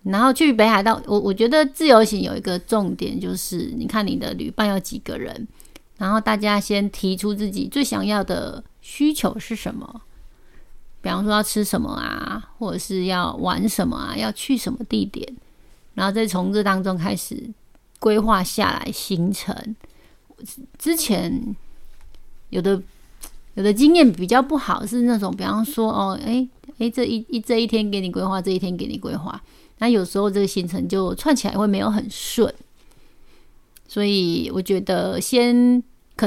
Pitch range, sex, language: 195-240 Hz, female, Chinese